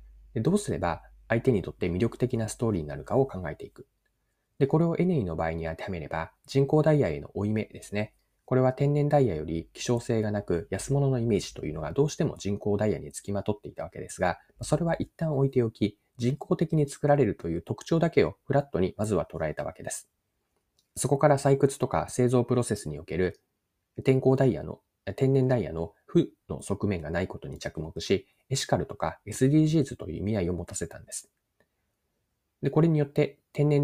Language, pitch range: Japanese, 90-140 Hz